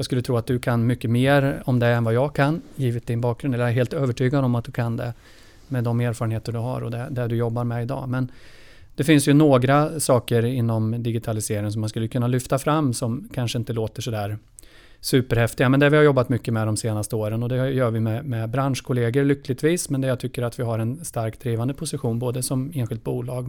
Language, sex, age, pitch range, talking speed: Swedish, male, 30-49, 115-135 Hz, 230 wpm